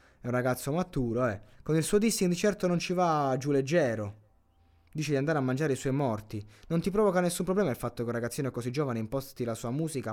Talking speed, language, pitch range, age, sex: 245 wpm, Italian, 110-145 Hz, 20-39, male